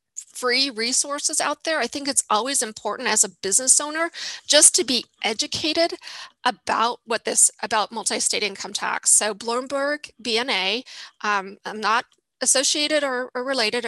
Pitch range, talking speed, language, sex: 210-260 Hz, 150 wpm, English, female